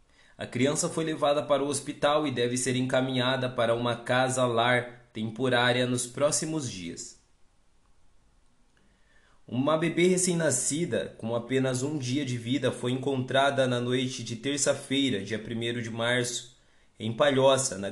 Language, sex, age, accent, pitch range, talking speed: Portuguese, male, 20-39, Brazilian, 115-140 Hz, 135 wpm